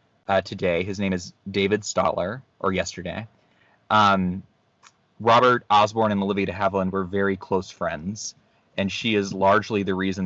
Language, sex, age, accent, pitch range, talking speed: English, male, 20-39, American, 95-120 Hz, 150 wpm